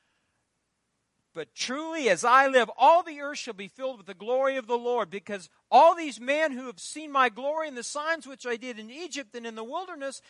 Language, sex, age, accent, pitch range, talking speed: English, male, 50-69, American, 225-315 Hz, 220 wpm